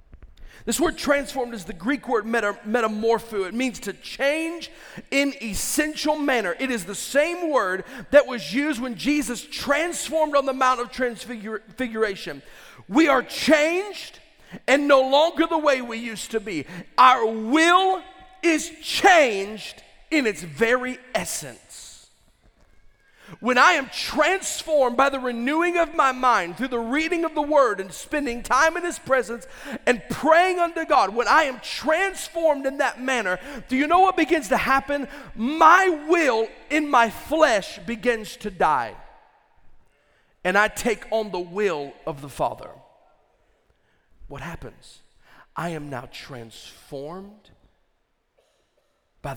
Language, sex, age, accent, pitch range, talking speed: English, male, 40-59, American, 215-310 Hz, 140 wpm